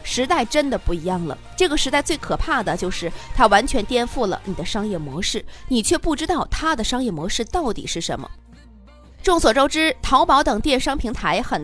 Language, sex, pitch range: Chinese, female, 190-295 Hz